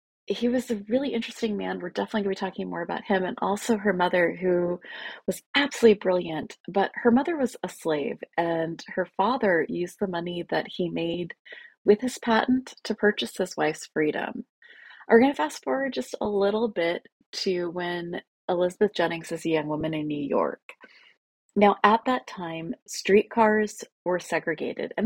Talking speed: 175 wpm